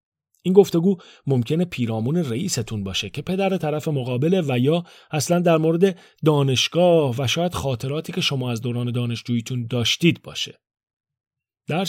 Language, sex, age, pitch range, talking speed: Persian, male, 40-59, 120-175 Hz, 135 wpm